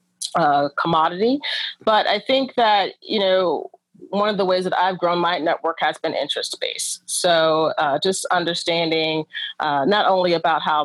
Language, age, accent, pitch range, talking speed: English, 30-49, American, 160-205 Hz, 165 wpm